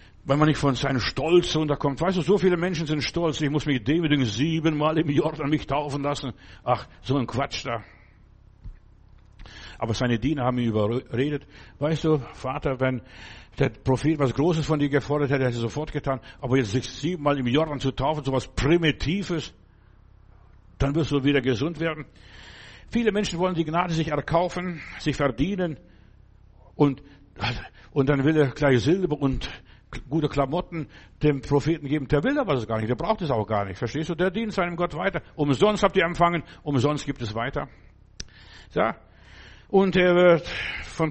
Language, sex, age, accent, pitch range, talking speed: German, male, 60-79, German, 125-165 Hz, 180 wpm